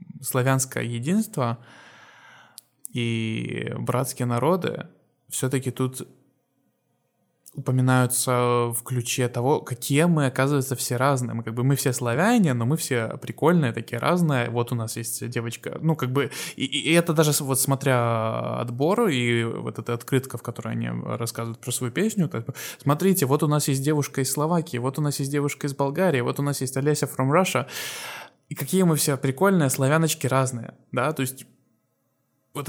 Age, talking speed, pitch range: 20-39, 165 wpm, 120-150 Hz